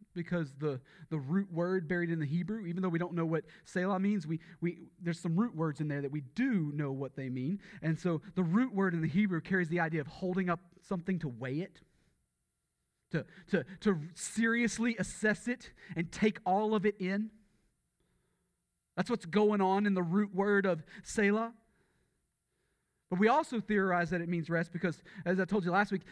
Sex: male